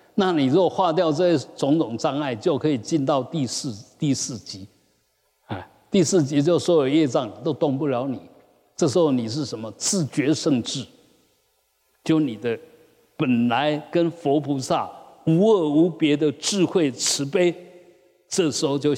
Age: 50-69